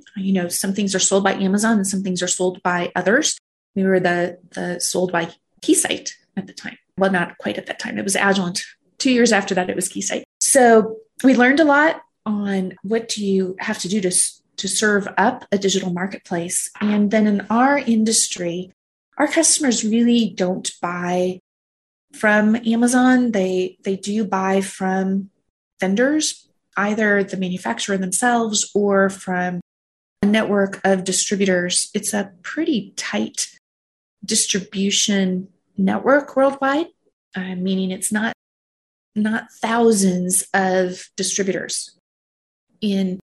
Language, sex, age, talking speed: English, female, 30-49, 145 wpm